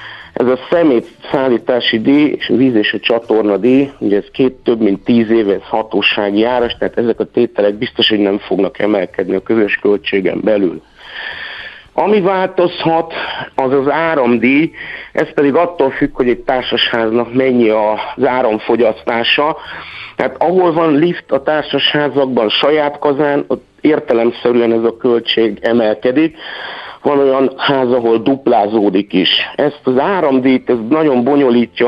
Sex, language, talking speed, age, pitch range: male, Hungarian, 140 wpm, 50-69, 115-150 Hz